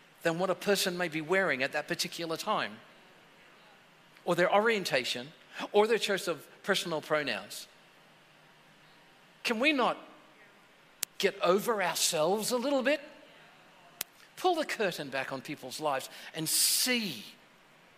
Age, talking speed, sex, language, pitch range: 60-79, 125 wpm, male, English, 175-250 Hz